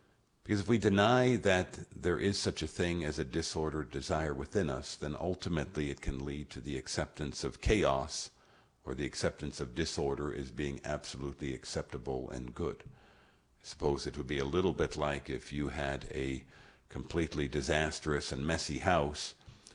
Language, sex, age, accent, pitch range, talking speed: English, male, 50-69, American, 70-85 Hz, 165 wpm